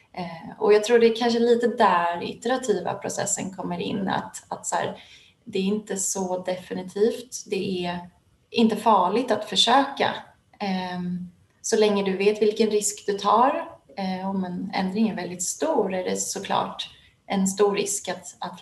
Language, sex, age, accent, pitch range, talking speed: Swedish, female, 30-49, native, 180-215 Hz, 160 wpm